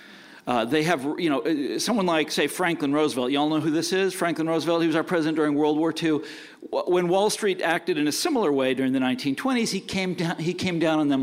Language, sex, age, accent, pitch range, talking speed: English, male, 40-59, American, 125-160 Hz, 230 wpm